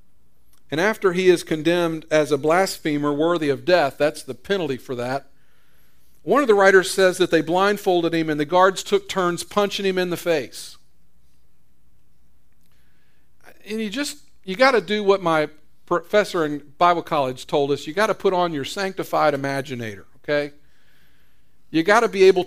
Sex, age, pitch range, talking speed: male, 50-69, 150-190 Hz, 170 wpm